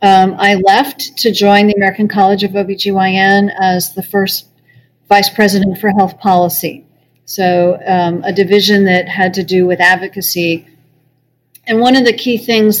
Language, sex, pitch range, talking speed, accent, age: English, female, 180-210 Hz, 160 wpm, American, 40-59